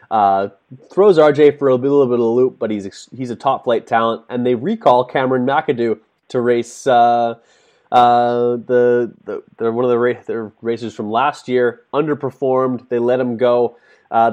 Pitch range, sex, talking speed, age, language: 110-130 Hz, male, 185 wpm, 20-39, English